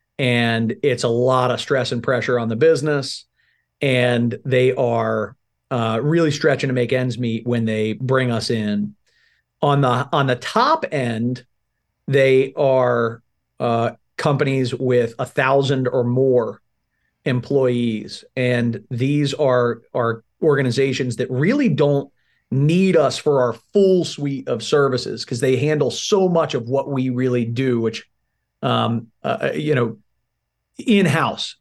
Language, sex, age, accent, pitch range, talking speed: English, male, 40-59, American, 120-145 Hz, 140 wpm